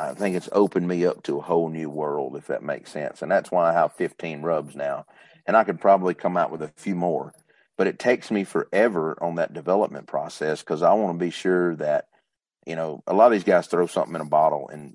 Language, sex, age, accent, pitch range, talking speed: English, male, 40-59, American, 80-95 Hz, 250 wpm